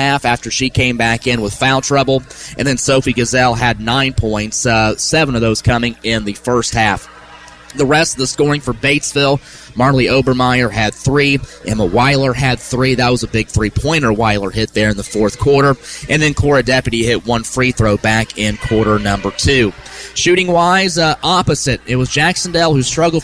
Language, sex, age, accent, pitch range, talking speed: English, male, 30-49, American, 115-140 Hz, 195 wpm